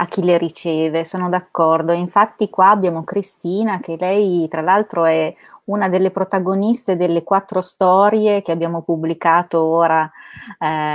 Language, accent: Italian, native